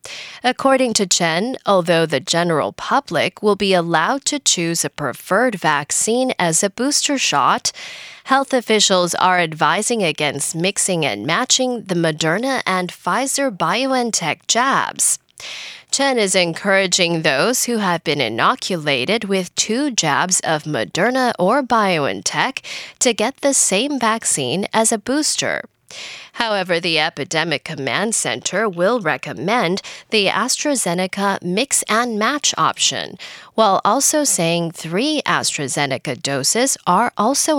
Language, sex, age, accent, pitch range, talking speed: English, female, 10-29, American, 165-250 Hz, 120 wpm